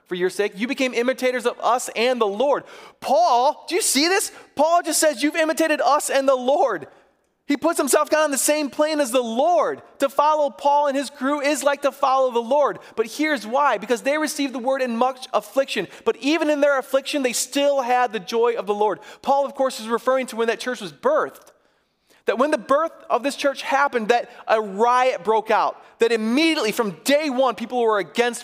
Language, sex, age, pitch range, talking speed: English, male, 30-49, 215-280 Hz, 215 wpm